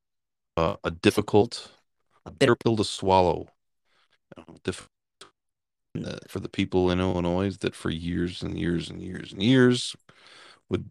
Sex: male